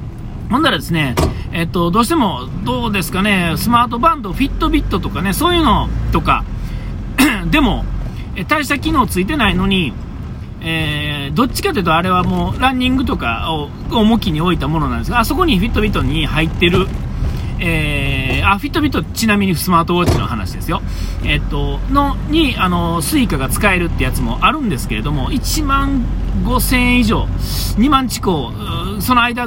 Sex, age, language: male, 40-59, Japanese